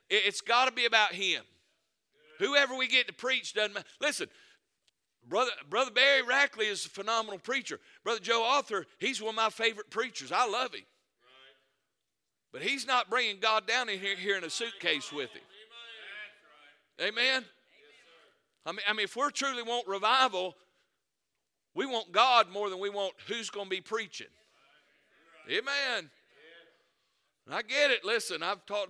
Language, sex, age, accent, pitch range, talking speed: English, male, 50-69, American, 195-260 Hz, 160 wpm